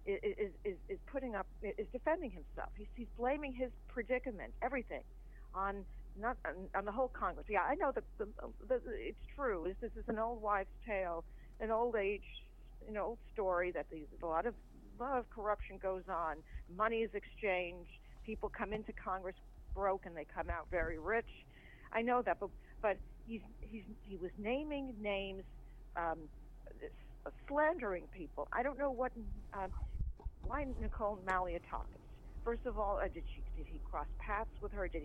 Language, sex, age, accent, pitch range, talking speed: English, female, 50-69, American, 185-240 Hz, 175 wpm